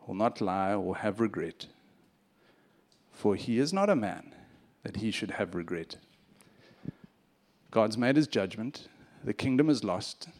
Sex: male